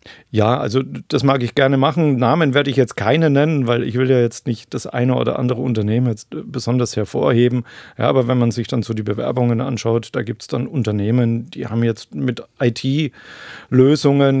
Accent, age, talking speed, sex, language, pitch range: German, 40-59, 190 wpm, male, German, 115-135 Hz